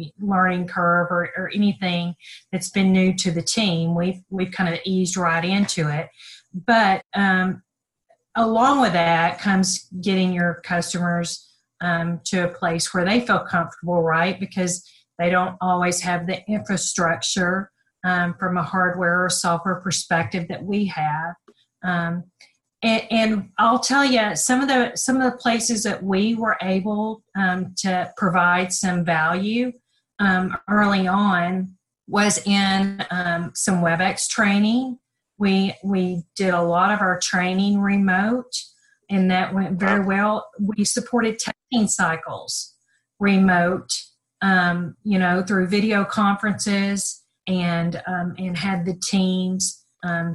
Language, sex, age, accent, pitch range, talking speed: English, female, 40-59, American, 175-200 Hz, 140 wpm